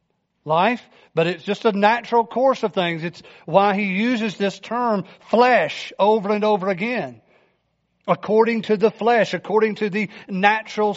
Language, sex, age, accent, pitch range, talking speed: English, male, 50-69, American, 180-235 Hz, 155 wpm